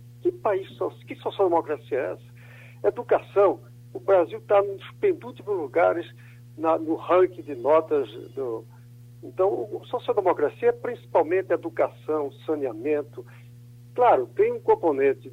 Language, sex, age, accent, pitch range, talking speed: Portuguese, male, 60-79, Brazilian, 120-200 Hz, 115 wpm